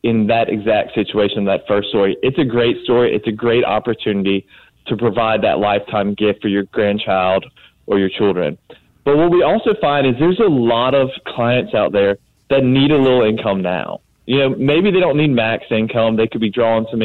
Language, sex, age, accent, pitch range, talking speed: English, male, 30-49, American, 110-140 Hz, 205 wpm